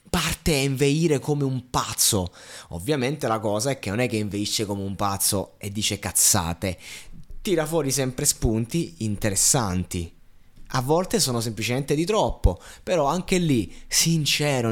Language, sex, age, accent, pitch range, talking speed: Italian, male, 20-39, native, 120-180 Hz, 145 wpm